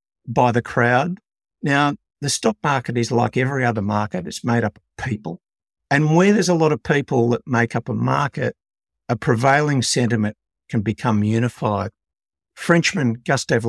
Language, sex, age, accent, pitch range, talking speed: English, male, 60-79, Australian, 115-140 Hz, 160 wpm